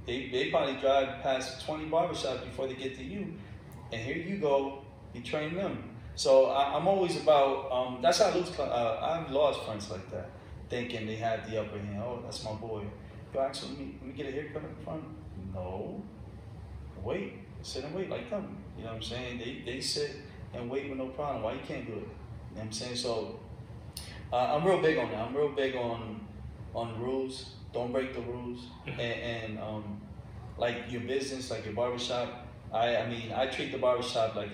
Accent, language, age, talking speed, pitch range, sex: American, English, 20-39, 210 wpm, 110-130 Hz, male